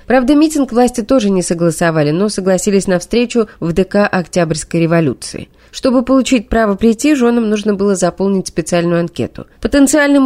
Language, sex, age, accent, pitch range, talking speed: Russian, female, 20-39, native, 170-245 Hz, 145 wpm